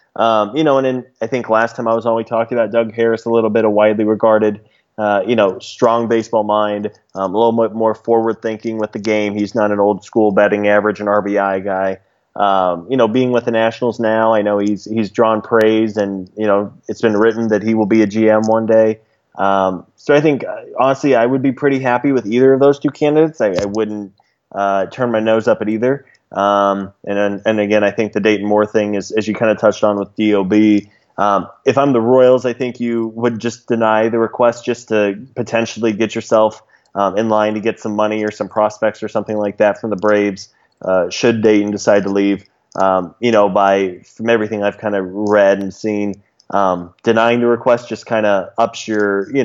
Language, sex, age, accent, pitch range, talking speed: English, male, 20-39, American, 100-115 Hz, 225 wpm